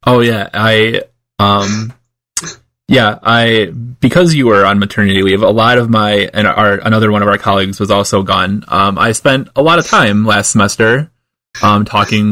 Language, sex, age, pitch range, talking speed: English, male, 20-39, 100-120 Hz, 180 wpm